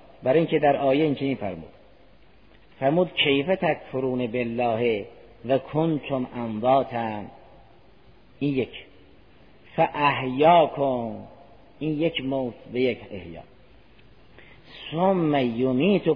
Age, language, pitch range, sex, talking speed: 50-69, Persian, 115-155 Hz, male, 100 wpm